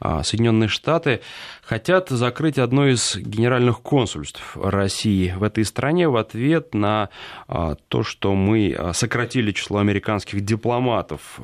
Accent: native